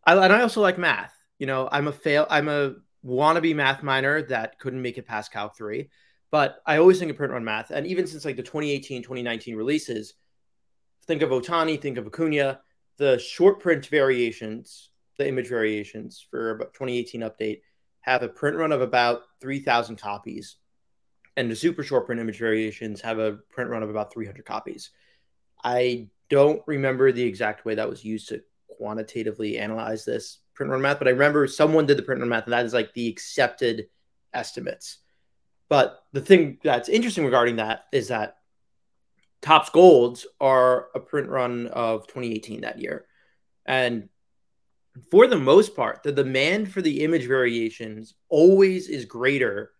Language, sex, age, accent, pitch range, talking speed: English, male, 20-39, American, 115-155 Hz, 175 wpm